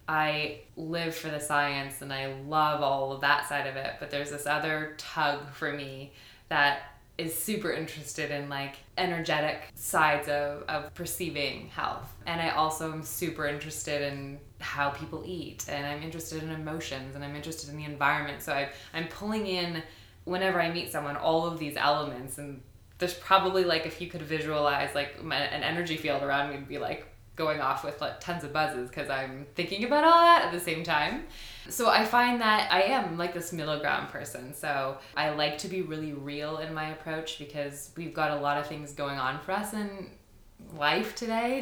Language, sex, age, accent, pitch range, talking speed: English, female, 20-39, American, 145-165 Hz, 195 wpm